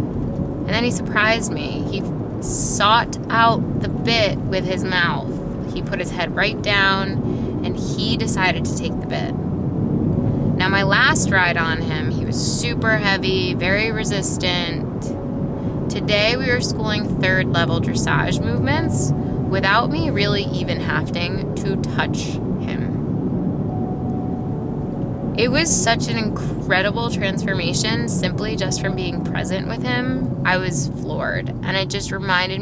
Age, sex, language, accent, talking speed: 20-39, female, English, American, 135 wpm